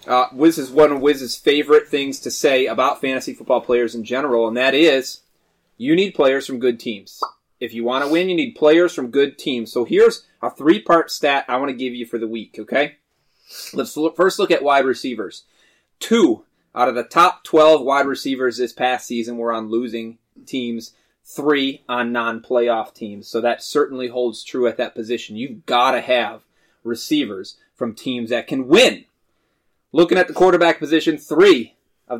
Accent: American